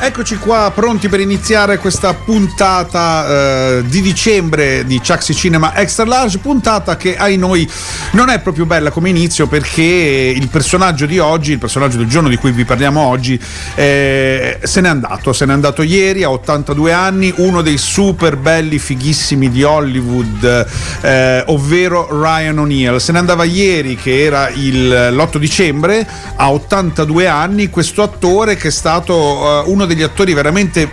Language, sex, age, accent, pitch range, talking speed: Italian, male, 40-59, native, 135-180 Hz, 165 wpm